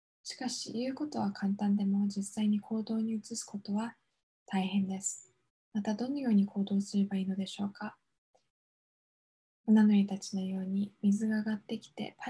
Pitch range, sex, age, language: 200-215 Hz, female, 10-29, Japanese